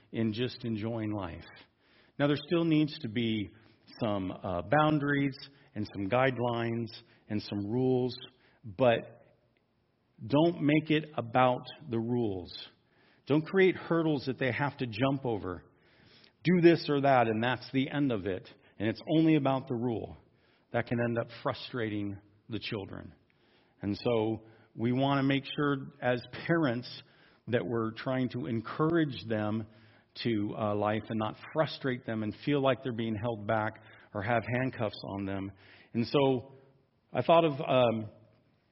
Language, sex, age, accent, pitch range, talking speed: English, male, 50-69, American, 110-140 Hz, 150 wpm